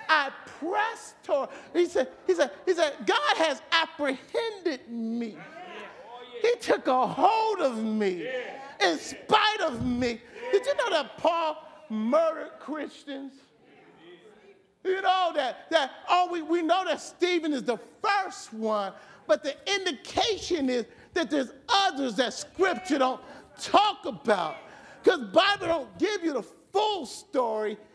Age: 40-59